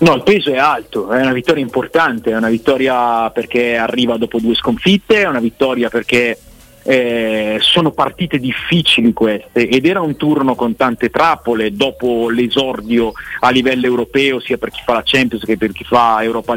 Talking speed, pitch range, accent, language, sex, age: 175 wpm, 120-145 Hz, native, Italian, male, 40-59